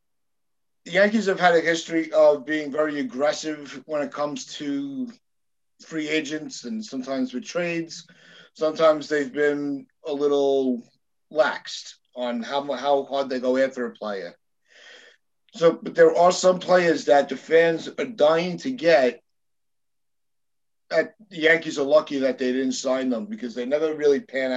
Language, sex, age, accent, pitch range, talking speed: English, male, 50-69, American, 130-160 Hz, 155 wpm